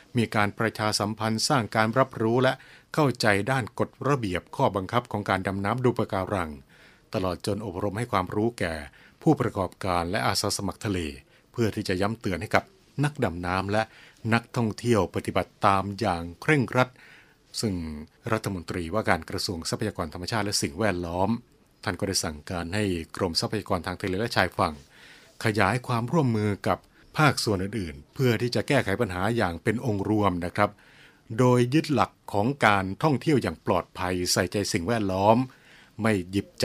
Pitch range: 95-120 Hz